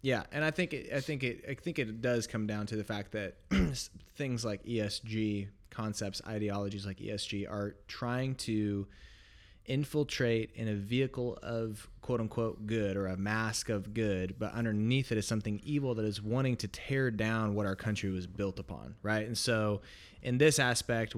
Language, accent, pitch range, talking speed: English, American, 100-115 Hz, 185 wpm